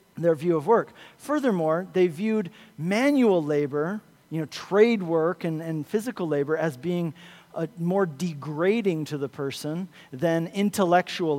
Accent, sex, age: American, male, 40-59